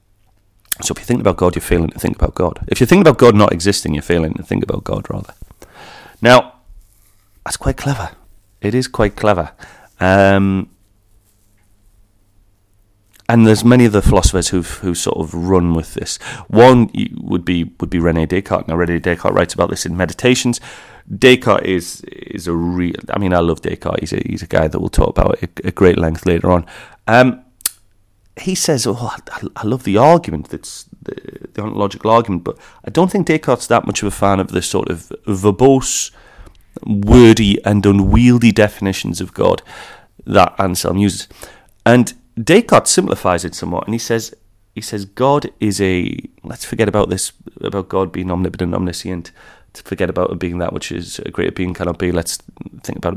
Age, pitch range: 30-49, 90-110 Hz